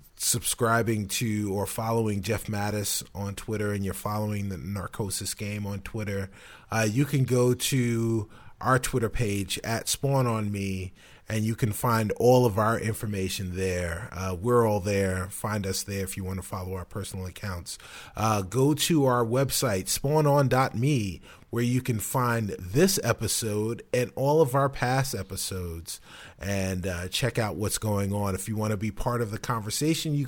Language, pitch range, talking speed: English, 105-130 Hz, 175 wpm